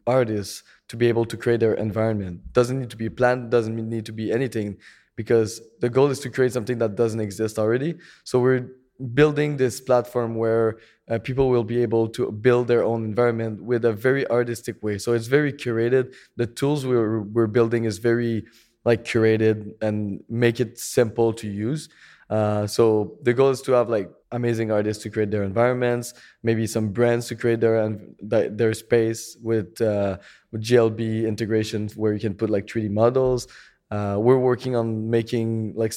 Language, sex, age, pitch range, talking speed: English, male, 20-39, 110-125 Hz, 180 wpm